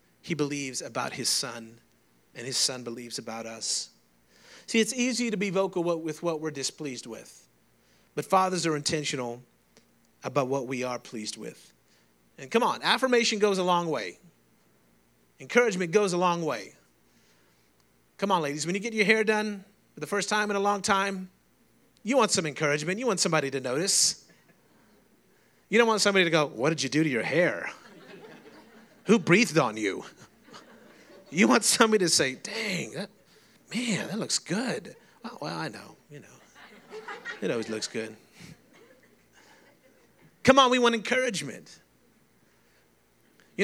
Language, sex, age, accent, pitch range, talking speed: English, male, 30-49, American, 140-210 Hz, 160 wpm